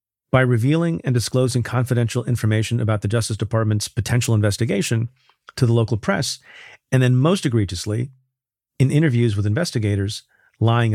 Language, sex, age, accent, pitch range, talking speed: English, male, 40-59, American, 110-130 Hz, 135 wpm